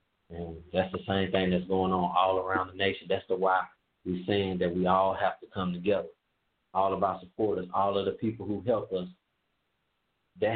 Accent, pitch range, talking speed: American, 90-100 Hz, 205 wpm